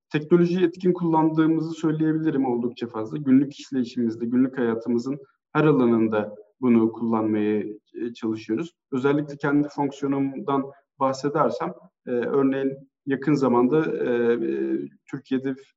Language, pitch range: Turkish, 120-145 Hz